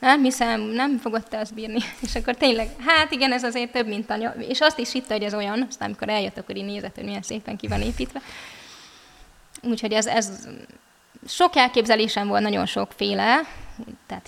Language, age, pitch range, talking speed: Hungarian, 20-39, 215-245 Hz, 185 wpm